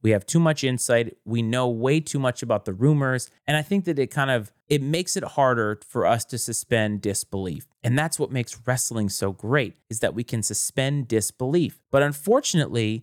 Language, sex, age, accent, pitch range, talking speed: English, male, 30-49, American, 115-160 Hz, 205 wpm